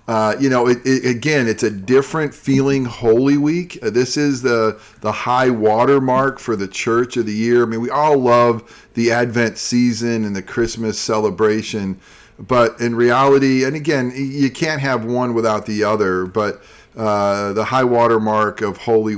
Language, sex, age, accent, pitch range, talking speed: English, male, 40-59, American, 100-125 Hz, 170 wpm